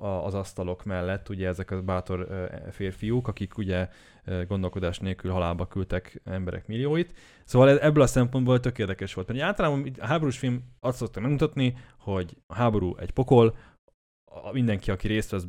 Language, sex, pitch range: Hungarian, male, 95-120 Hz